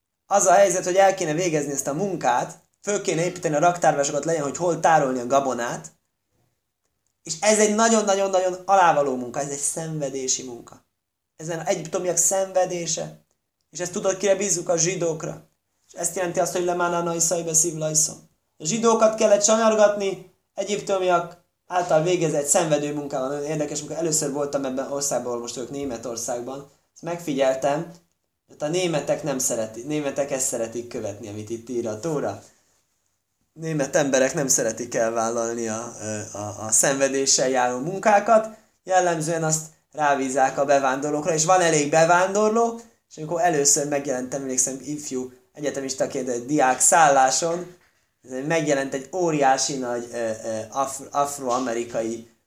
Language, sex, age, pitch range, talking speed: Hungarian, male, 20-39, 130-180 Hz, 135 wpm